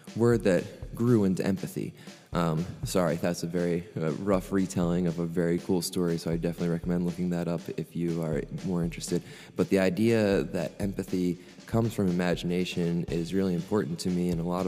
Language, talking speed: English, 190 wpm